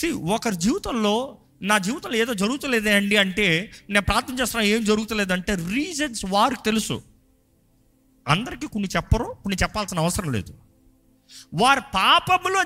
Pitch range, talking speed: 135-225 Hz, 120 wpm